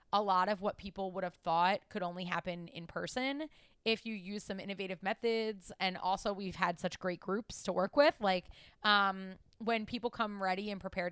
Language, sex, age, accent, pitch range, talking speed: English, female, 20-39, American, 175-205 Hz, 200 wpm